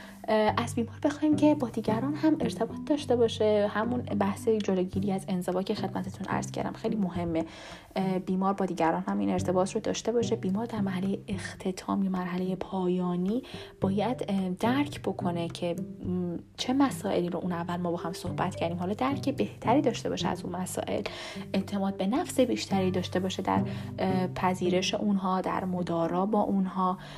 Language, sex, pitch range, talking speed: Persian, female, 170-215 Hz, 155 wpm